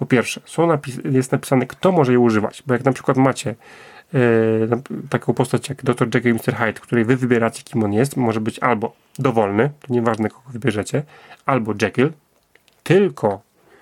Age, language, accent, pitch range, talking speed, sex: 30-49, Polish, native, 115-140 Hz, 180 wpm, male